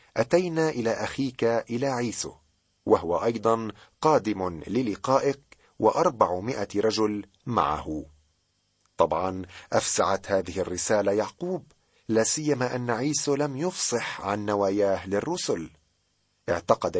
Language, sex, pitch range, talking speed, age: Arabic, male, 95-125 Hz, 90 wpm, 40-59